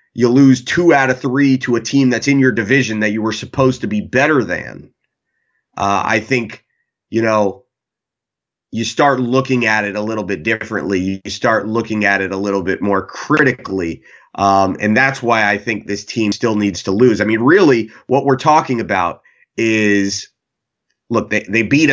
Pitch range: 105-130 Hz